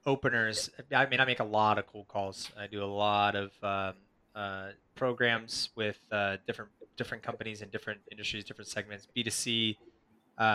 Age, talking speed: 20-39, 175 wpm